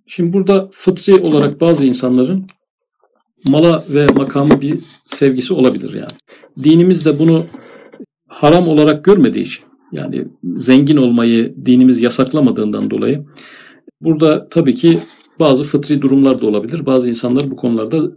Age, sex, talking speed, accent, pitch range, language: 50-69, male, 125 wpm, native, 130-170 Hz, Turkish